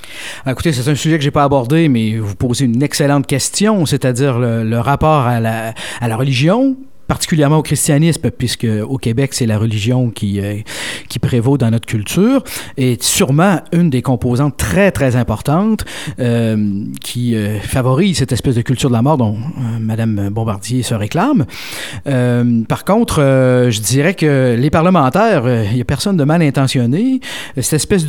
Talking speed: 180 wpm